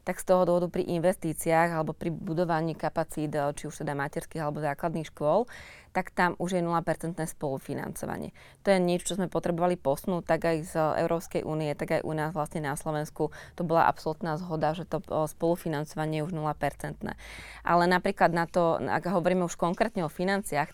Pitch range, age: 155-175 Hz, 20-39